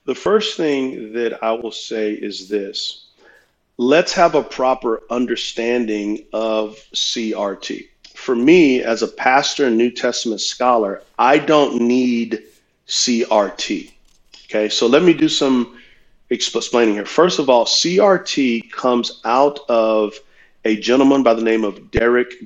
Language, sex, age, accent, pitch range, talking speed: English, male, 40-59, American, 115-135 Hz, 135 wpm